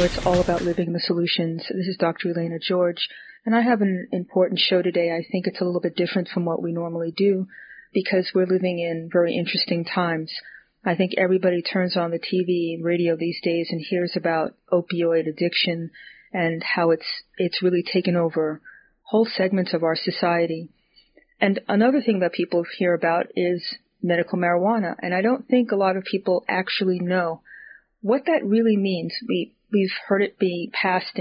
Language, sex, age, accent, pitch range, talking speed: English, female, 40-59, American, 170-190 Hz, 185 wpm